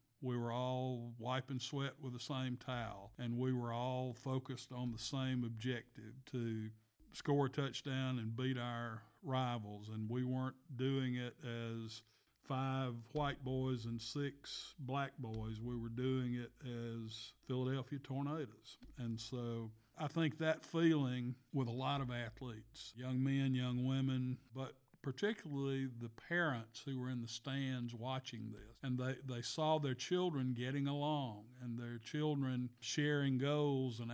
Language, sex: English, male